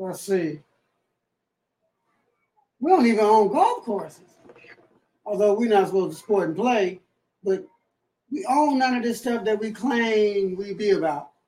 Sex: male